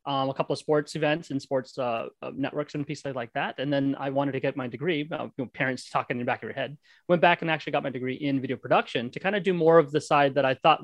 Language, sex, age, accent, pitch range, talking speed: English, male, 30-49, American, 135-160 Hz, 285 wpm